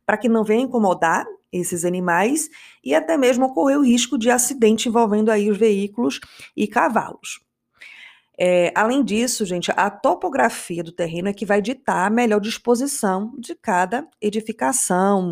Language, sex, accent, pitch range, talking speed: Portuguese, female, Brazilian, 190-240 Hz, 155 wpm